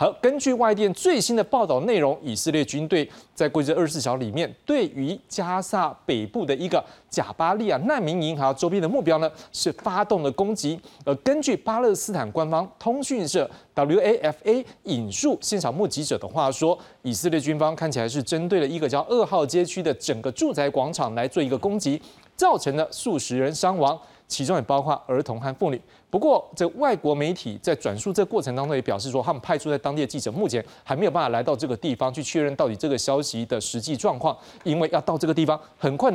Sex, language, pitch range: male, Chinese, 140-195 Hz